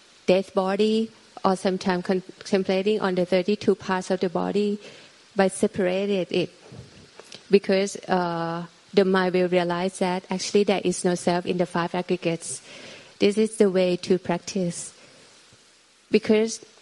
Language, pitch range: Thai, 180-205 Hz